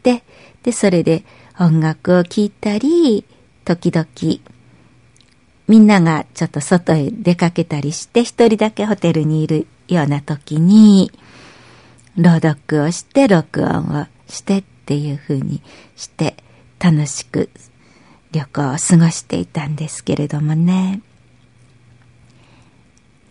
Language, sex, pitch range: Japanese, female, 150-210 Hz